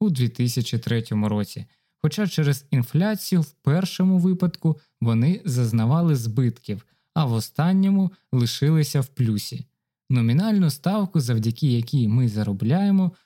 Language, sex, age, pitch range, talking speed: Ukrainian, male, 20-39, 120-170 Hz, 110 wpm